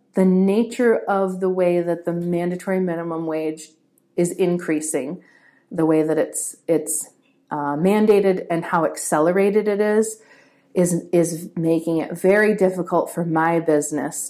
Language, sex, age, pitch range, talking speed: English, female, 30-49, 160-195 Hz, 140 wpm